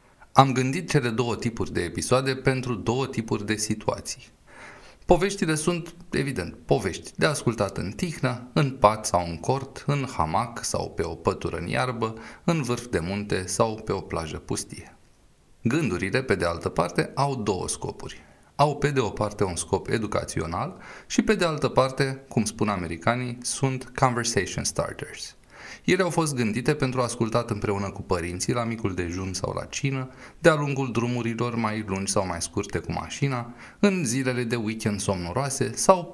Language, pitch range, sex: Romanian, 105-140 Hz, male